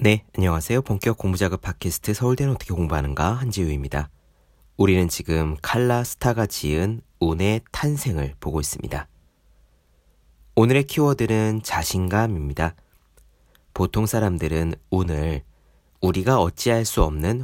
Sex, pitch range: male, 80-115 Hz